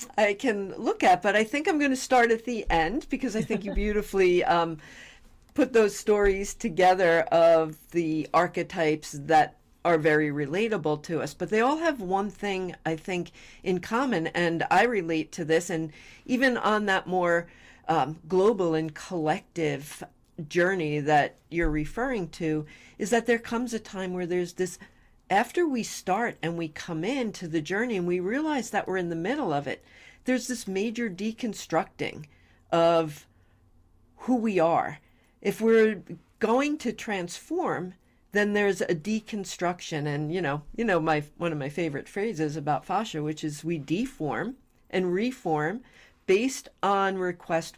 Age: 50-69